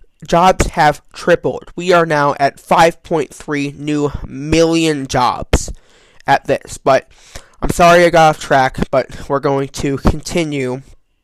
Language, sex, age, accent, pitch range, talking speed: English, male, 20-39, American, 135-165 Hz, 135 wpm